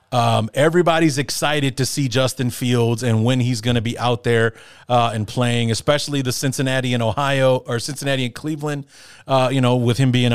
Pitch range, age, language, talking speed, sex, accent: 110-135 Hz, 30-49, English, 195 wpm, male, American